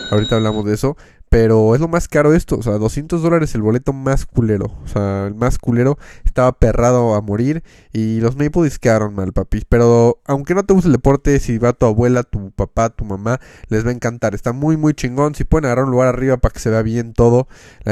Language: Spanish